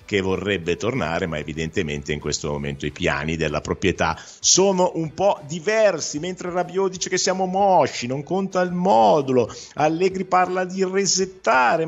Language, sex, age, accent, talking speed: Italian, male, 50-69, native, 150 wpm